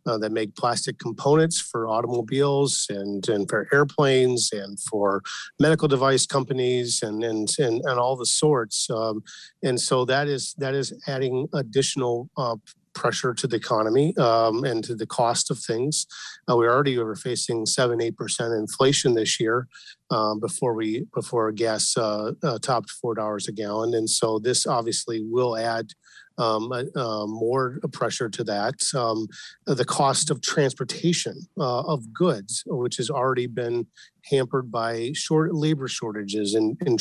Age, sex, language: 40-59, male, English